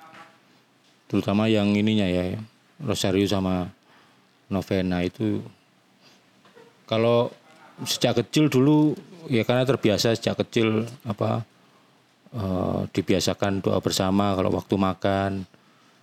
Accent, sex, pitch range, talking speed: native, male, 95-115 Hz, 95 wpm